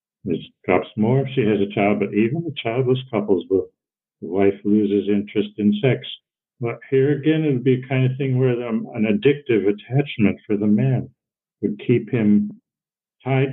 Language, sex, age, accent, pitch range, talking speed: English, male, 60-79, American, 100-120 Hz, 185 wpm